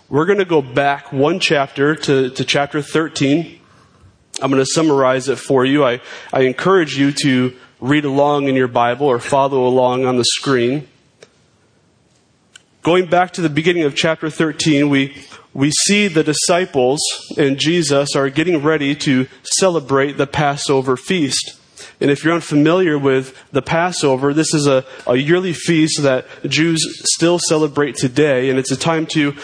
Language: English